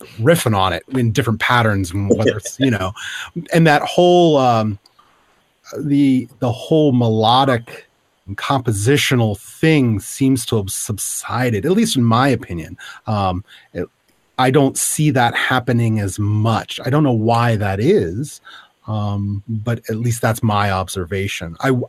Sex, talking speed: male, 145 wpm